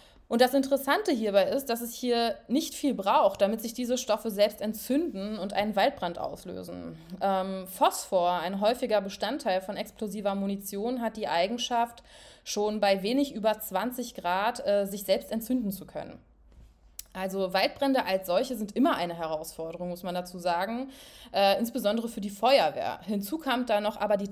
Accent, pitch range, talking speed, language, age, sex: German, 195-245 Hz, 165 wpm, German, 20-39, female